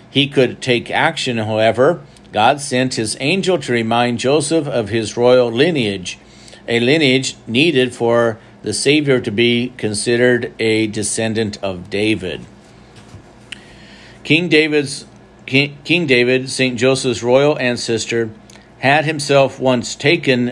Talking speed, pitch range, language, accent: 120 wpm, 115-135 Hz, English, American